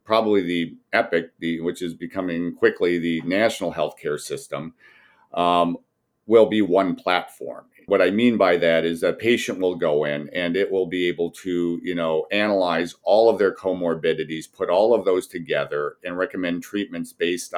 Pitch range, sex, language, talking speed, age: 85-110 Hz, male, English, 170 wpm, 50-69